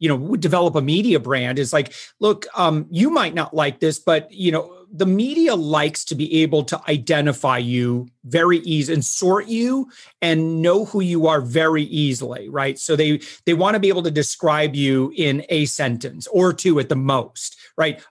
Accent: American